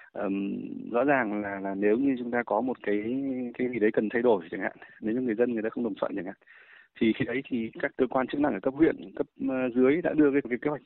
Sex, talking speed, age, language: male, 280 wpm, 20-39, Vietnamese